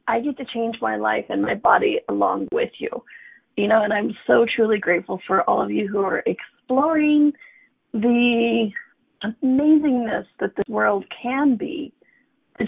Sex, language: female, English